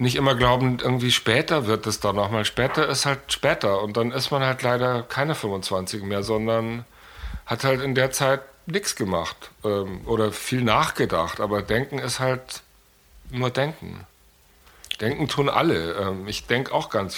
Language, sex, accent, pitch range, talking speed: German, male, German, 110-130 Hz, 170 wpm